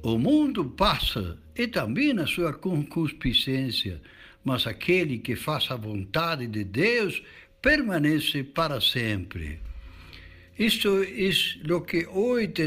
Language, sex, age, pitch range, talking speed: Portuguese, male, 60-79, 120-175 Hz, 115 wpm